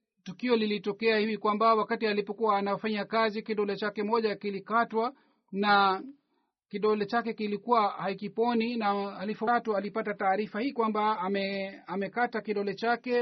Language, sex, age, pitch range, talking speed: Swahili, male, 40-59, 200-230 Hz, 125 wpm